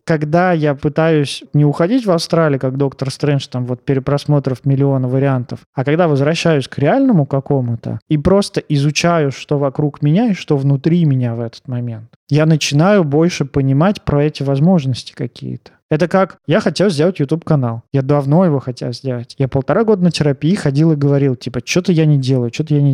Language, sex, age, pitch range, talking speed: Russian, male, 20-39, 135-170 Hz, 180 wpm